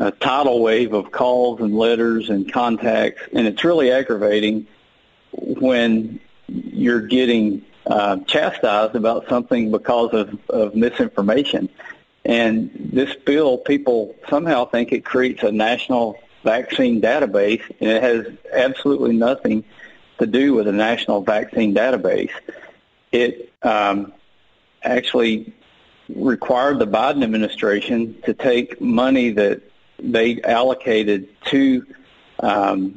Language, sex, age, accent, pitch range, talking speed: English, male, 50-69, American, 105-120 Hz, 115 wpm